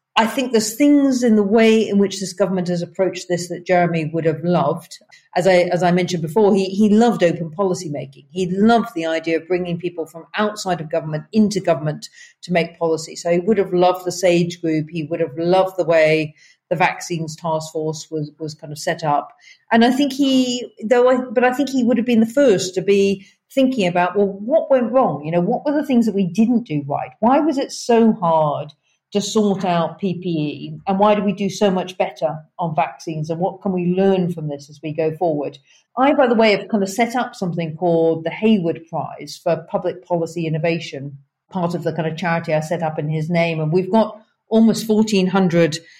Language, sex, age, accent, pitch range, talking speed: English, female, 50-69, British, 165-210 Hz, 220 wpm